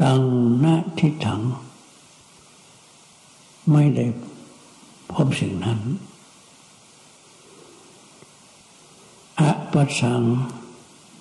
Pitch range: 120-155 Hz